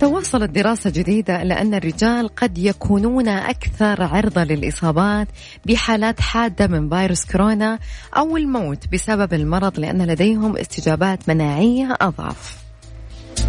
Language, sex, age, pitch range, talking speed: Arabic, female, 20-39, 170-230 Hz, 110 wpm